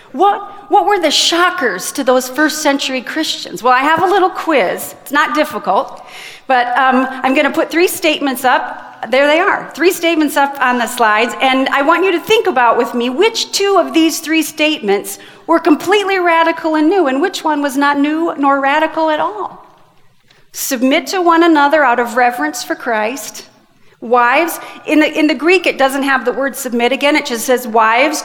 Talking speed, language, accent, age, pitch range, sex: 195 wpm, English, American, 40-59, 265-335 Hz, female